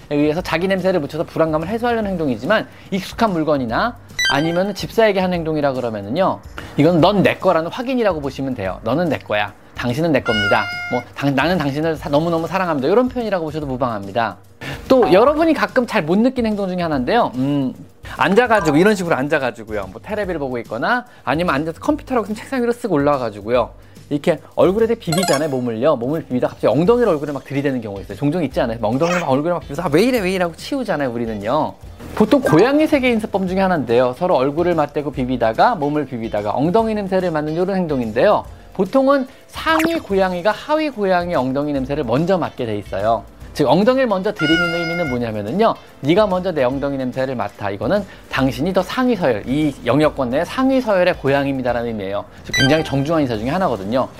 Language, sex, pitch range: Korean, male, 130-195 Hz